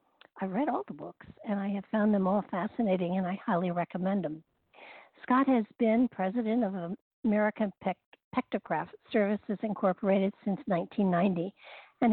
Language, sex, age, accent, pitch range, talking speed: English, female, 60-79, American, 185-220 Hz, 145 wpm